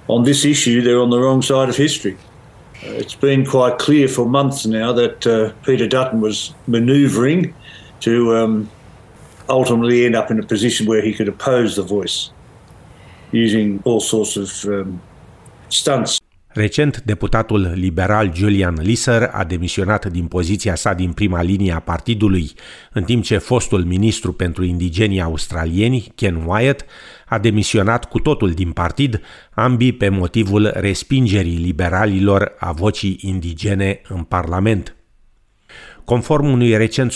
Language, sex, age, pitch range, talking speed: Romanian, male, 50-69, 95-120 Hz, 140 wpm